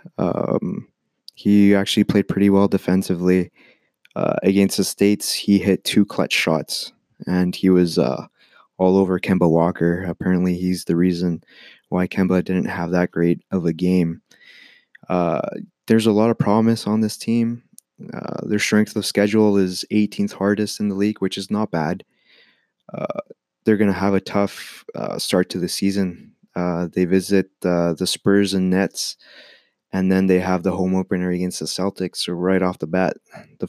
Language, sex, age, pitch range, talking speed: English, male, 20-39, 90-100 Hz, 175 wpm